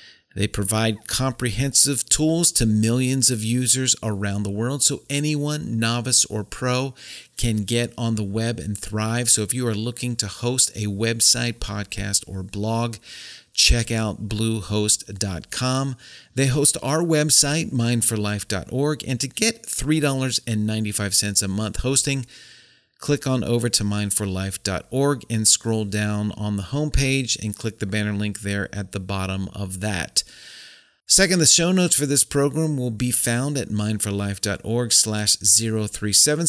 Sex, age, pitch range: male, 40-59, 105-135 Hz